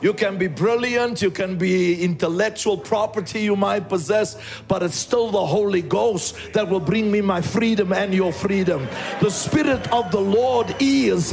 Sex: male